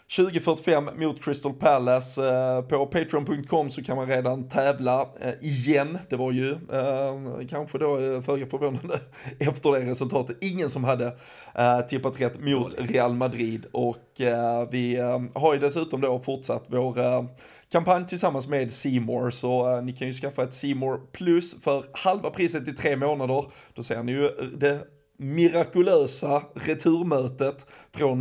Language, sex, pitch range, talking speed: Swedish, male, 125-145 Hz, 135 wpm